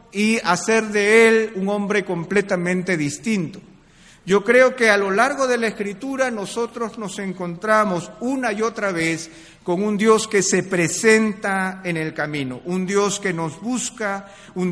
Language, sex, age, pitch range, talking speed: Spanish, male, 50-69, 170-215 Hz, 160 wpm